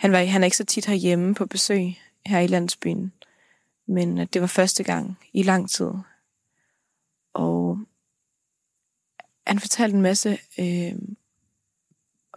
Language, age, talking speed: Danish, 20-39, 125 wpm